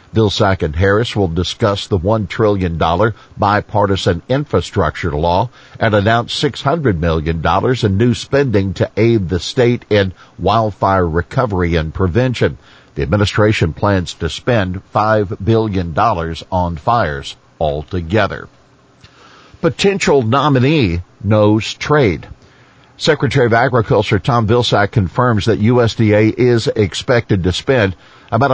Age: 50-69